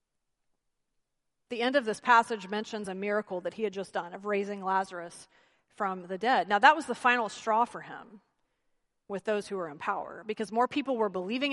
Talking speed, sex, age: 200 wpm, female, 30-49